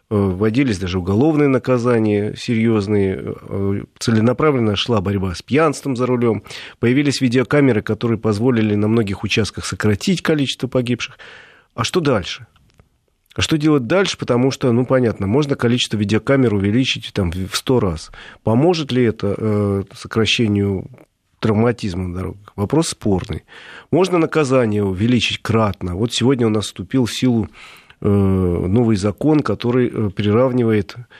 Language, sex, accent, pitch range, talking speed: Russian, male, native, 100-125 Hz, 125 wpm